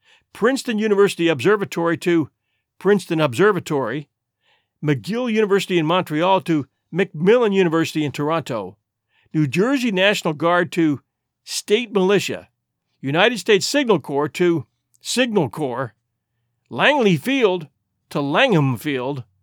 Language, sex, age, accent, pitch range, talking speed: English, male, 50-69, American, 140-200 Hz, 105 wpm